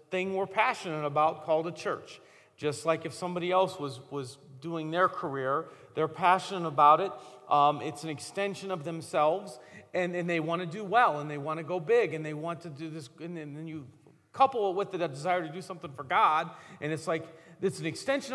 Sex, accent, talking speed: male, American, 215 wpm